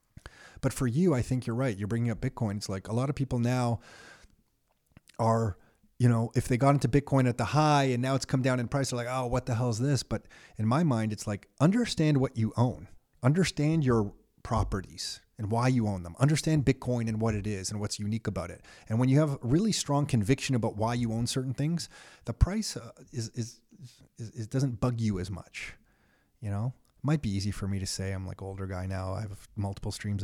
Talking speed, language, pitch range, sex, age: 235 wpm, English, 105-135 Hz, male, 30-49